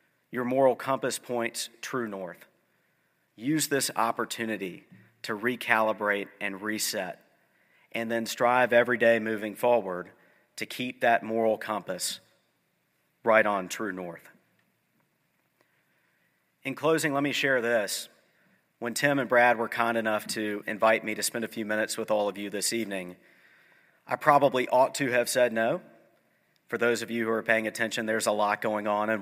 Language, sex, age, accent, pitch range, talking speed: English, male, 40-59, American, 105-120 Hz, 160 wpm